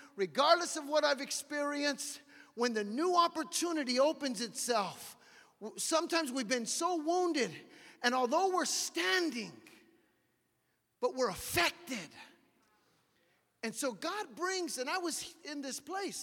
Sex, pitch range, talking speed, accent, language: male, 240-330 Hz, 120 wpm, American, English